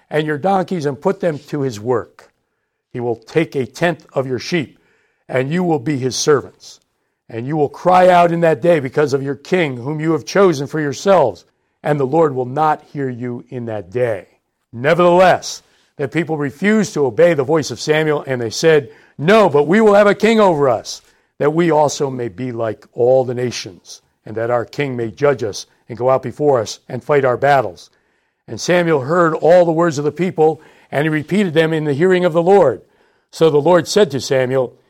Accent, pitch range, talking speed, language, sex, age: American, 130-175 Hz, 210 wpm, English, male, 60-79